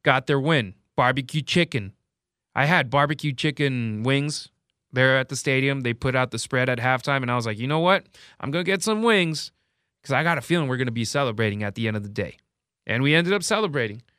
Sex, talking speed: male, 235 wpm